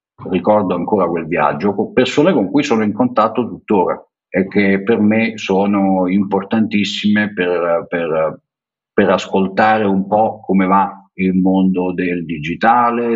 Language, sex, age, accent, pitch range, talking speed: Italian, male, 50-69, native, 95-120 Hz, 130 wpm